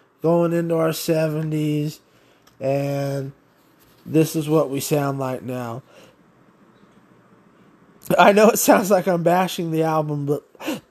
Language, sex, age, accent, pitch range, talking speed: English, male, 20-39, American, 150-180 Hz, 120 wpm